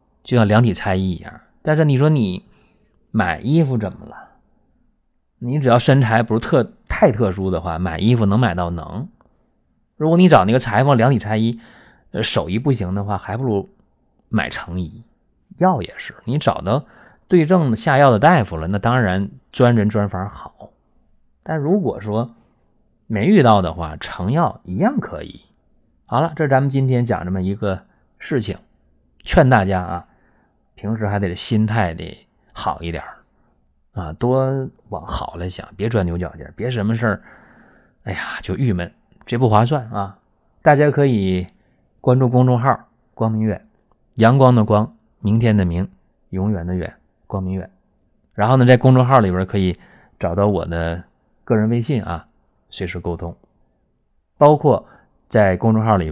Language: Chinese